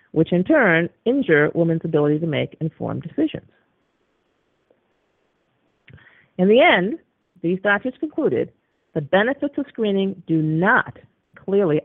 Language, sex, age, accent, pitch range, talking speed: English, female, 40-59, American, 155-200 Hz, 115 wpm